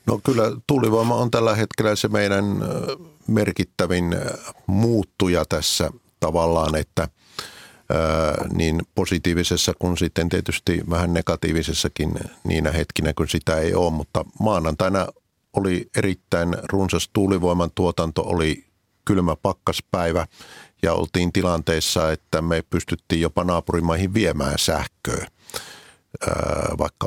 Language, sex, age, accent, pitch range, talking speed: Finnish, male, 50-69, native, 80-95 Hz, 105 wpm